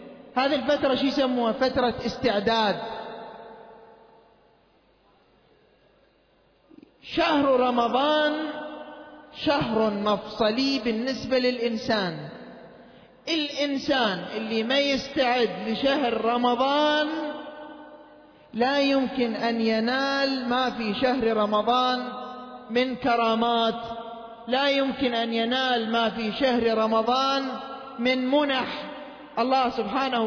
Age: 40-59